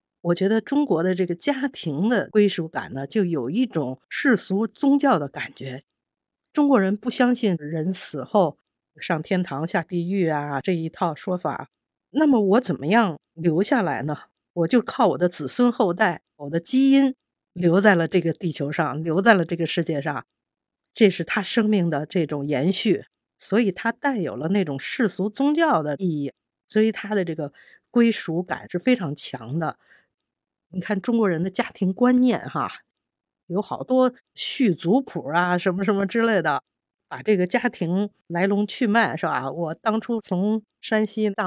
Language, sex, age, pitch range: Chinese, female, 50-69, 160-220 Hz